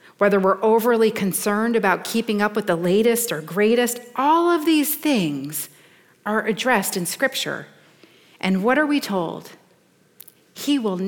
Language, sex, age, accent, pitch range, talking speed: English, female, 40-59, American, 180-235 Hz, 145 wpm